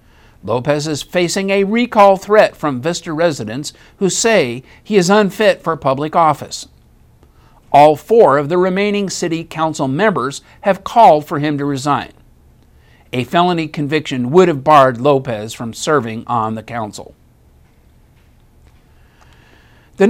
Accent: American